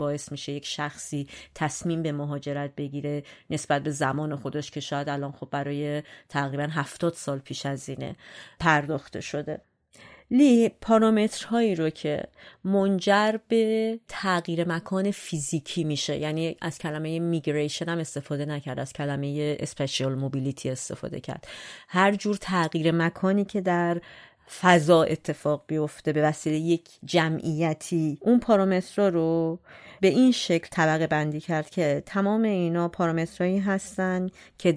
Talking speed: 130 wpm